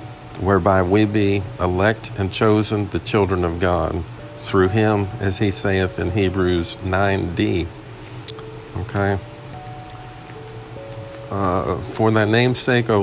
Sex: male